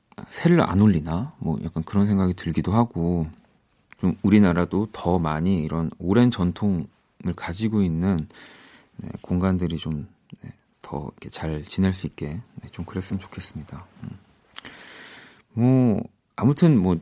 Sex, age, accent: male, 40-59, native